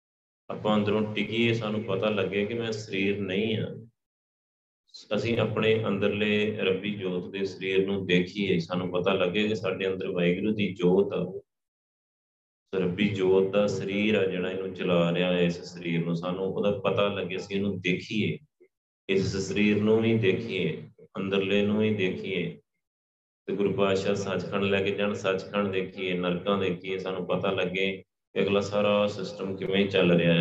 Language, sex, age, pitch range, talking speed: Punjabi, male, 30-49, 85-100 Hz, 160 wpm